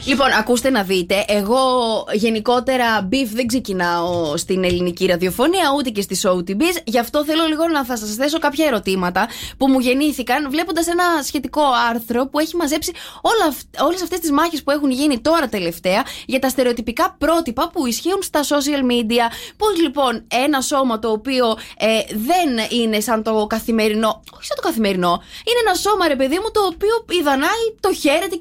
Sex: female